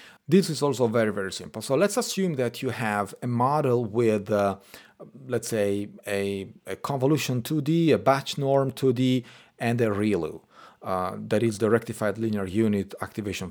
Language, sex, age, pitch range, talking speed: English, male, 40-59, 105-140 Hz, 165 wpm